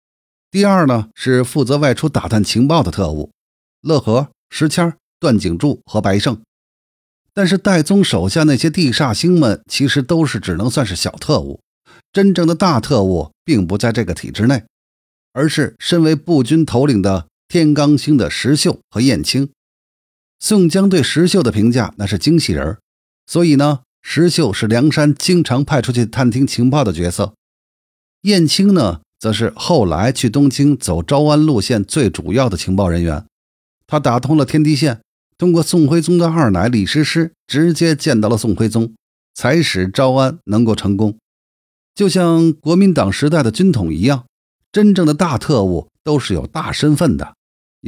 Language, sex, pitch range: Chinese, male, 105-160 Hz